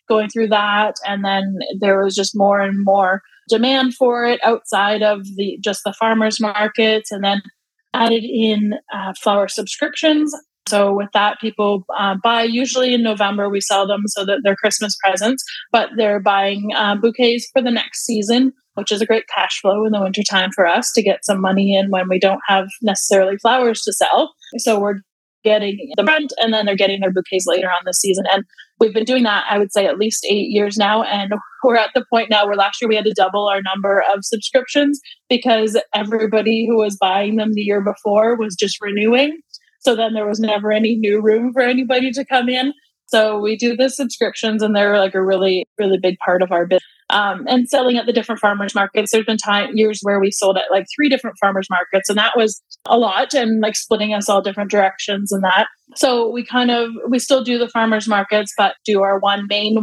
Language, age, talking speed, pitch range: English, 20-39, 215 wpm, 200-230 Hz